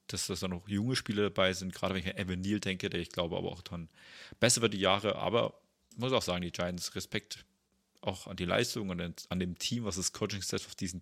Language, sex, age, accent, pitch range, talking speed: German, male, 30-49, German, 90-105 Hz, 245 wpm